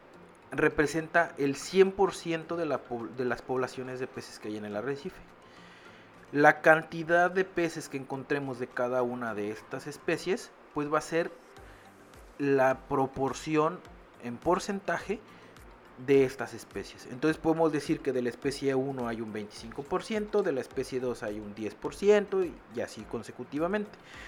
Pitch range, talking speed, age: 125-165 Hz, 145 wpm, 40-59